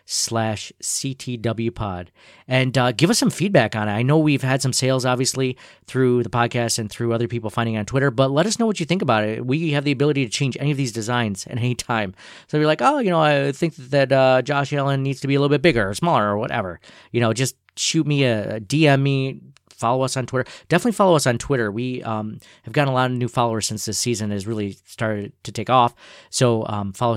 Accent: American